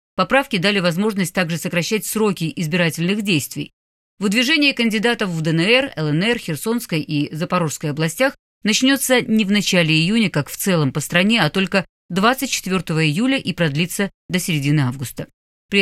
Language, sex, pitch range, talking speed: Russian, female, 160-215 Hz, 140 wpm